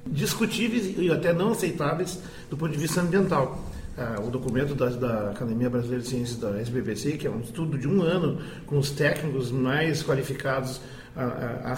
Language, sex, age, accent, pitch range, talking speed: Portuguese, male, 40-59, Brazilian, 140-195 Hz, 165 wpm